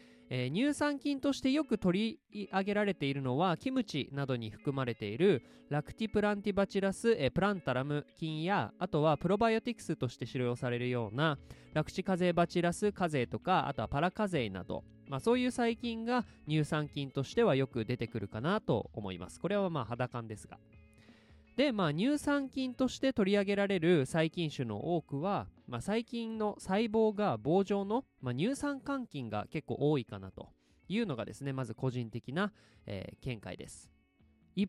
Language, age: Japanese, 20-39